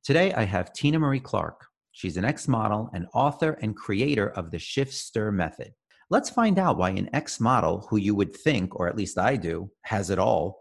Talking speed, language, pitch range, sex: 200 wpm, English, 95-135 Hz, male